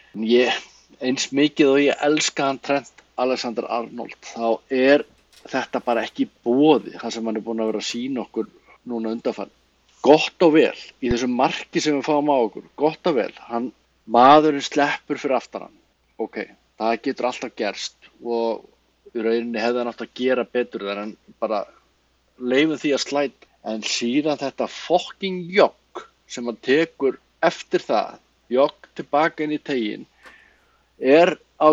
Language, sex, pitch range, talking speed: English, male, 120-150 Hz, 165 wpm